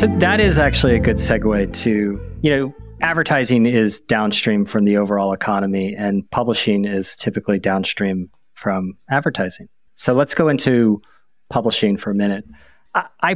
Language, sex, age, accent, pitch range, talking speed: English, male, 30-49, American, 105-125 Hz, 150 wpm